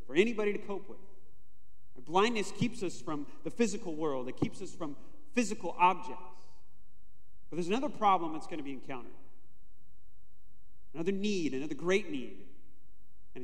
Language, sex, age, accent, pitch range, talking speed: English, male, 30-49, American, 140-205 Hz, 145 wpm